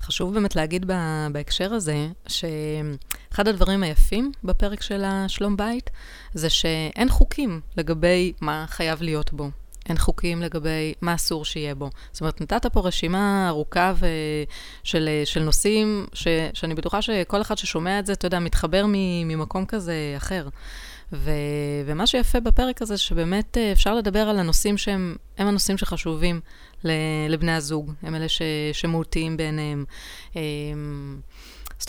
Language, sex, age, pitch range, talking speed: Hebrew, female, 20-39, 155-200 Hz, 135 wpm